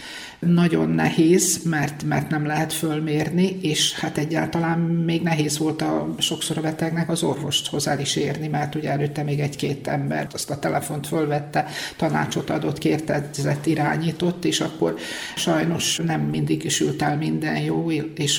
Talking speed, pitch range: 155 wpm, 140-165 Hz